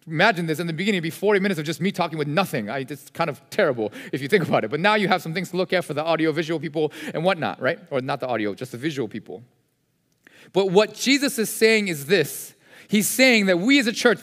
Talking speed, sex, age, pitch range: 270 wpm, male, 30-49, 180-235 Hz